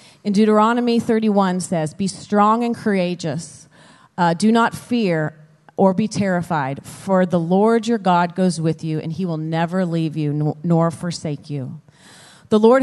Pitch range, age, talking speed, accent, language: 180-225 Hz, 30-49, 160 wpm, American, English